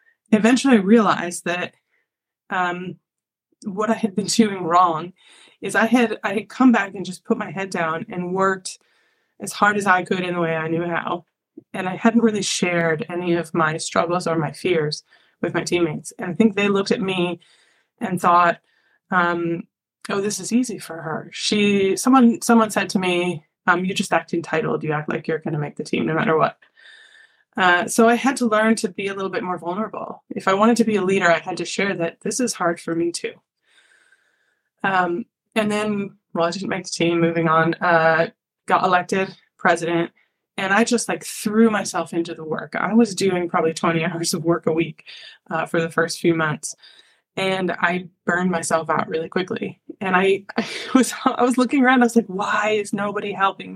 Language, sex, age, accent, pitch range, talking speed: English, female, 20-39, American, 170-215 Hz, 205 wpm